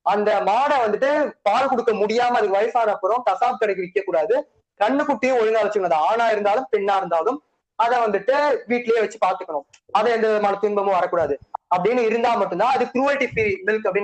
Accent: native